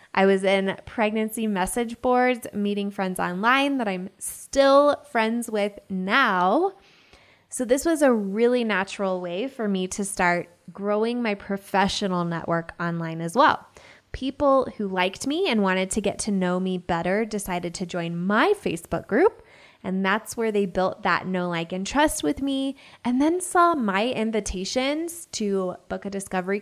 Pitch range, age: 190-260 Hz, 20-39